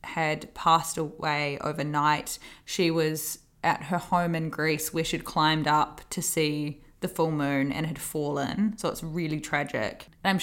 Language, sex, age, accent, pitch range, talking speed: English, female, 20-39, Australian, 160-180 Hz, 165 wpm